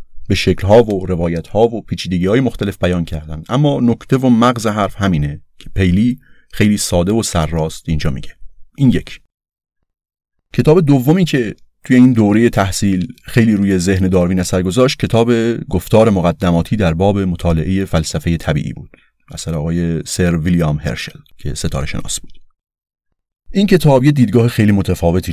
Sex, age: male, 30-49